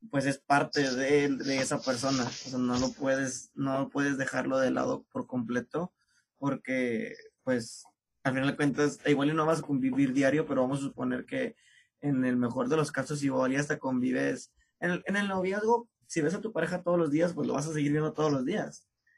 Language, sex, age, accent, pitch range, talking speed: Spanish, male, 20-39, Mexican, 135-160 Hz, 210 wpm